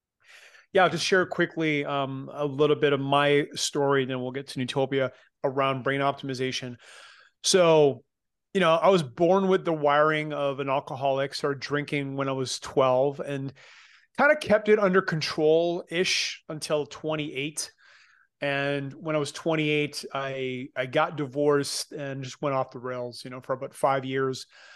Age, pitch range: 30-49, 135-150 Hz